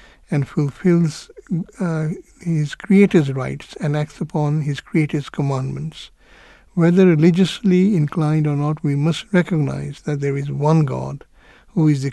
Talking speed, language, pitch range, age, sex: 140 wpm, English, 140-165 Hz, 60-79, male